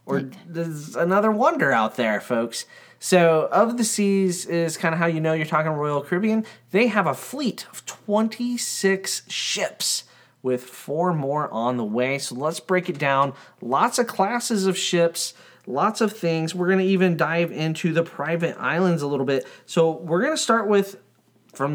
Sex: male